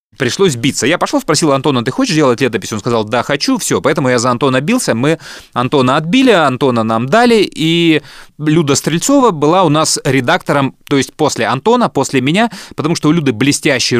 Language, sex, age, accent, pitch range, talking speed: Russian, male, 20-39, native, 115-160 Hz, 190 wpm